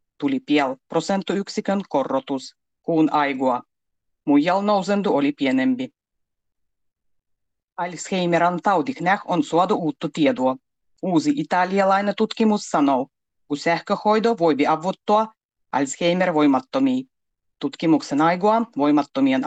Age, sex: 30-49, female